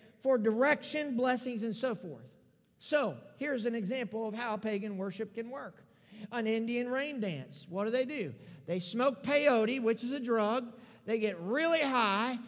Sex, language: male, English